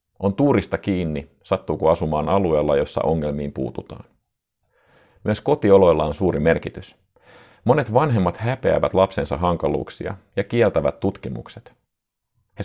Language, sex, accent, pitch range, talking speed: Finnish, male, native, 80-110 Hz, 110 wpm